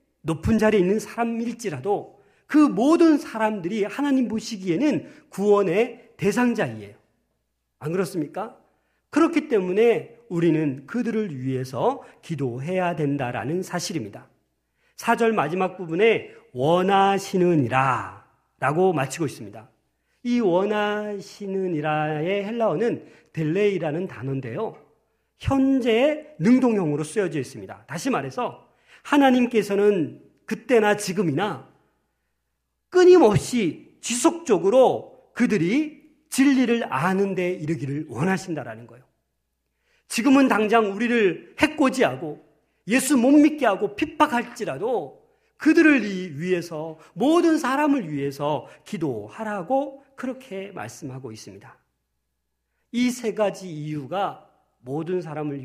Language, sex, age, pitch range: Korean, male, 40-59, 150-240 Hz